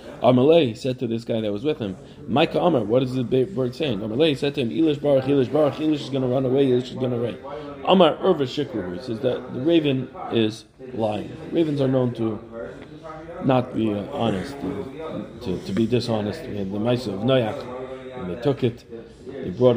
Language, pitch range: English, 115-145 Hz